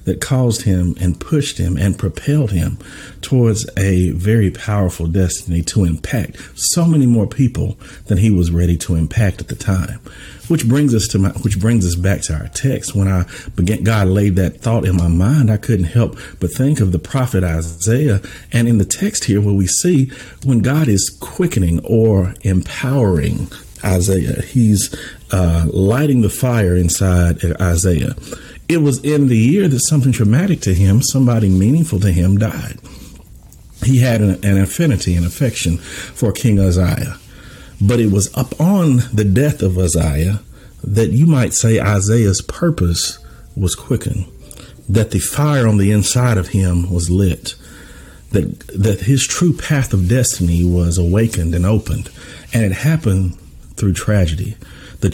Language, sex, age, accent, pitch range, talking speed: English, male, 50-69, American, 90-120 Hz, 165 wpm